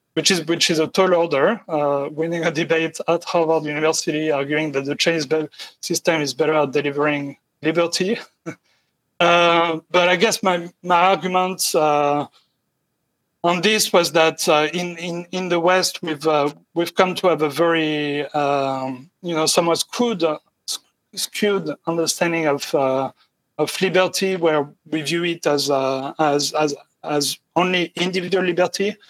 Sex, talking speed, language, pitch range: male, 150 wpm, English, 145-175 Hz